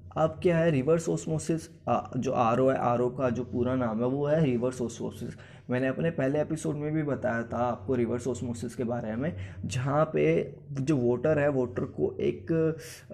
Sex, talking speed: male, 185 wpm